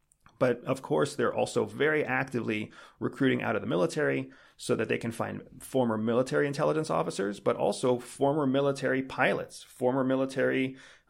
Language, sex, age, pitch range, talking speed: English, male, 30-49, 110-135 Hz, 150 wpm